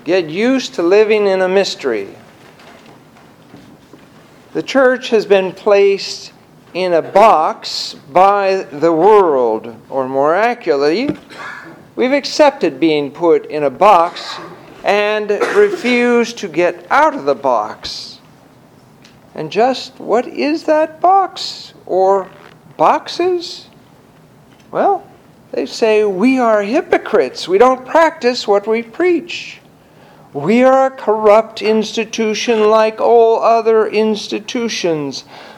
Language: English